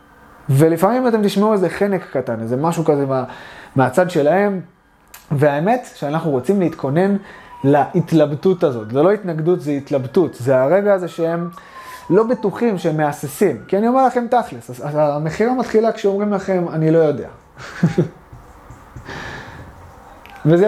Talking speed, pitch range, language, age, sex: 130 wpm, 150-205 Hz, Hebrew, 20-39, male